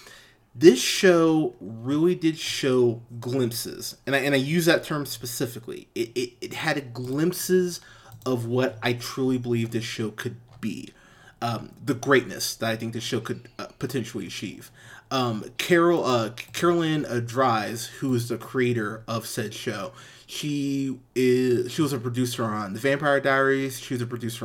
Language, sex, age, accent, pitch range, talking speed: English, male, 30-49, American, 120-150 Hz, 160 wpm